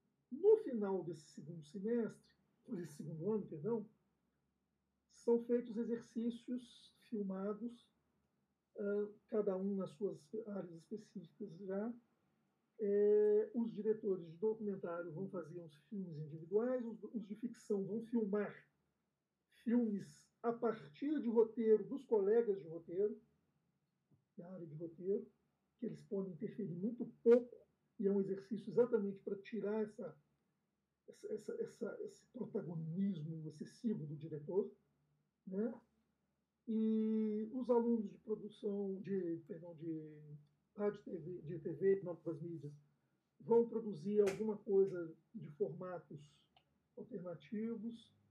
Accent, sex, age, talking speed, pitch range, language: Brazilian, male, 50-69, 115 wpm, 185-230 Hz, Portuguese